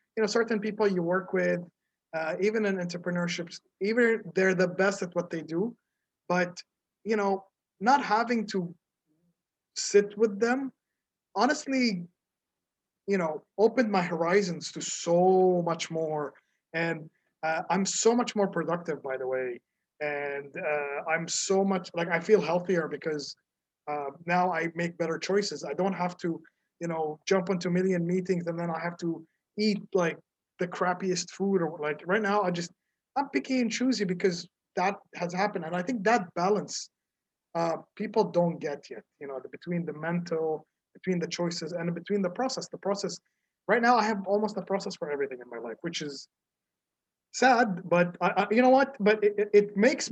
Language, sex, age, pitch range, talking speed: English, male, 20-39, 165-205 Hz, 175 wpm